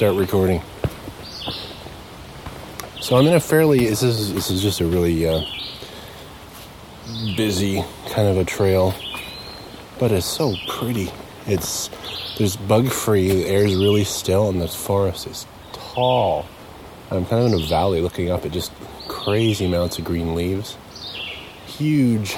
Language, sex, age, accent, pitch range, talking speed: English, male, 30-49, American, 95-115 Hz, 145 wpm